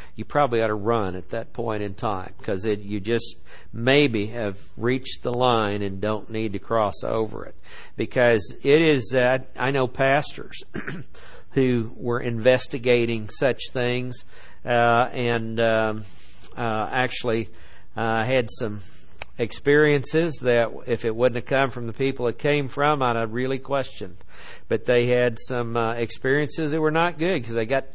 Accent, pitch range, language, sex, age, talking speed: American, 115-145 Hz, English, male, 50-69, 160 wpm